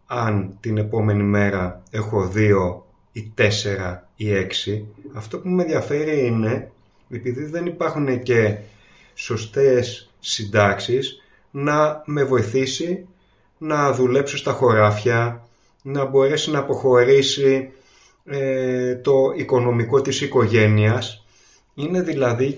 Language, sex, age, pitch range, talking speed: Greek, male, 30-49, 105-140 Hz, 105 wpm